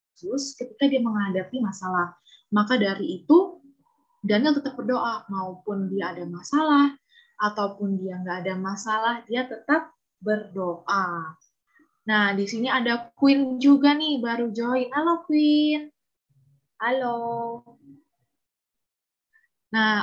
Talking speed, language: 105 wpm, Indonesian